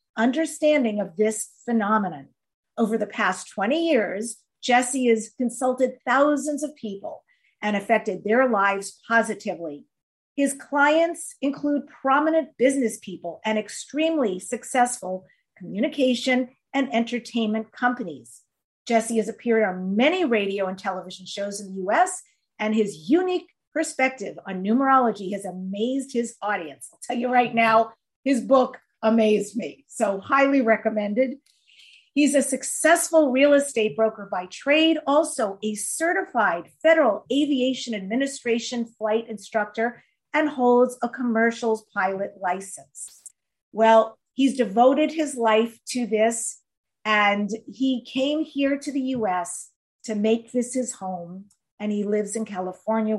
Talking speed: 125 wpm